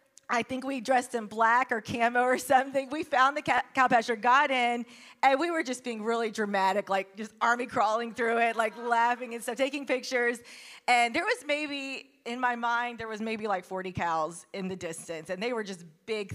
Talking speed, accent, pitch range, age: 210 wpm, American, 215-275 Hz, 30-49